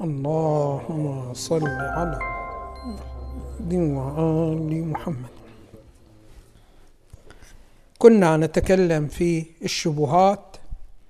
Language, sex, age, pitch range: Arabic, male, 60-79, 145-180 Hz